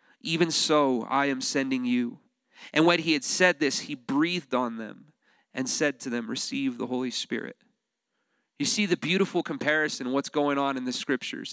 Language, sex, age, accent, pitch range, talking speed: English, male, 30-49, American, 165-210 Hz, 185 wpm